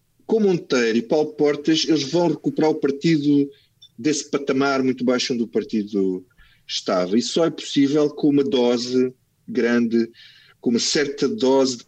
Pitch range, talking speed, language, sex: 120-150 Hz, 155 wpm, Portuguese, male